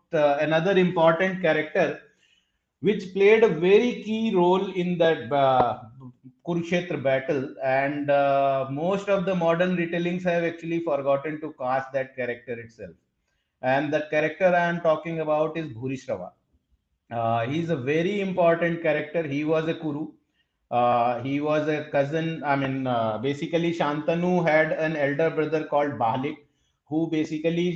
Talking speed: 145 wpm